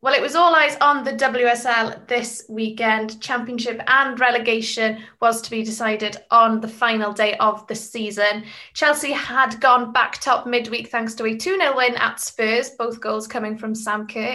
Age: 20-39